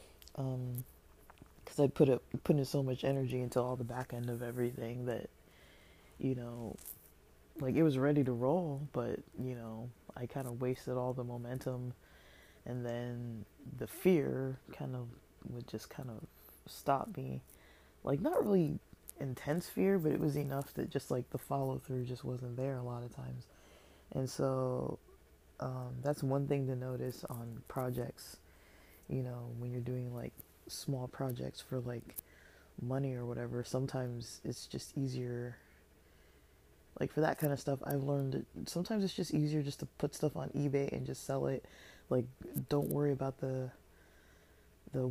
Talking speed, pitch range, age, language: 165 wpm, 120-135 Hz, 20-39, English